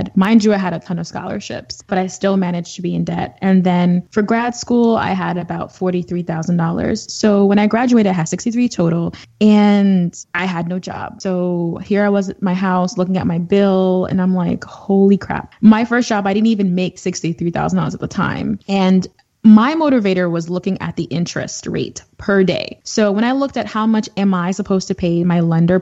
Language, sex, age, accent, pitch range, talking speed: English, female, 20-39, American, 175-215 Hz, 220 wpm